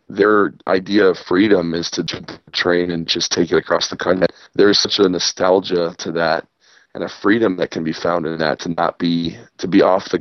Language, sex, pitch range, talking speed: English, male, 85-100 Hz, 215 wpm